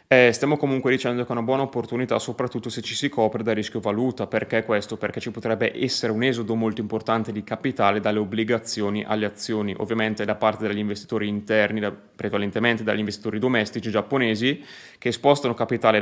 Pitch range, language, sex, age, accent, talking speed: 110-120 Hz, Italian, male, 20-39, native, 175 wpm